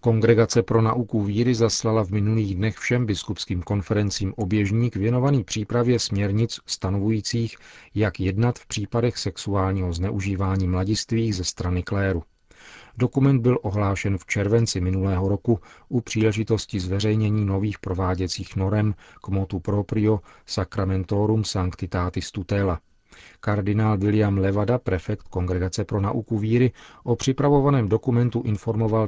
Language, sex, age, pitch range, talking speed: Czech, male, 40-59, 95-115 Hz, 120 wpm